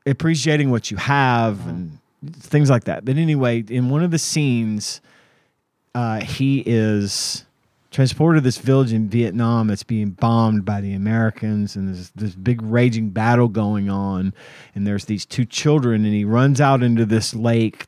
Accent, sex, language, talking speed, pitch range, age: American, male, English, 170 wpm, 105-130 Hz, 30-49